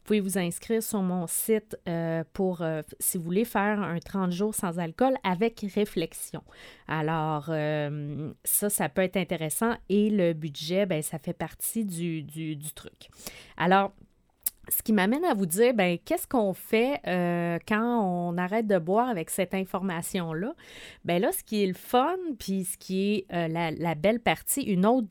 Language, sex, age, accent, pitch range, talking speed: French, female, 30-49, Canadian, 170-220 Hz, 185 wpm